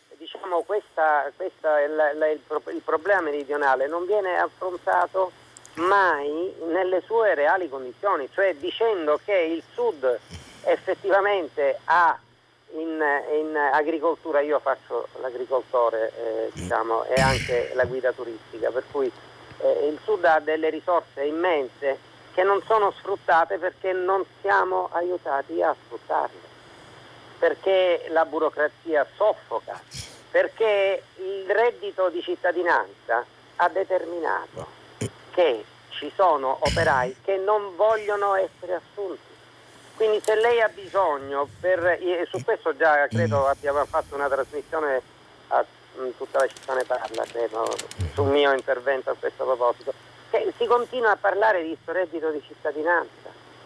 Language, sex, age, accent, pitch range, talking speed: Italian, male, 50-69, native, 150-210 Hz, 130 wpm